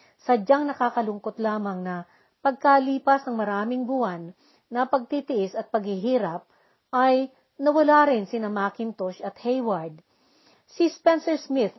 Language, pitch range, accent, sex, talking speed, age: Filipino, 210-280 Hz, native, female, 115 wpm, 40-59